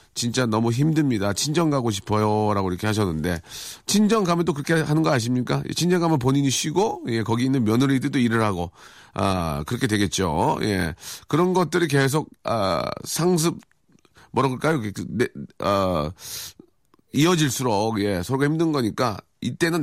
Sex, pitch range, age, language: male, 105-155 Hz, 40-59, Korean